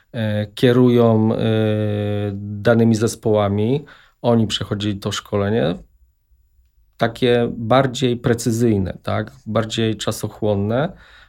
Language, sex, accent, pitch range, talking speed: English, male, Polish, 105-120 Hz, 70 wpm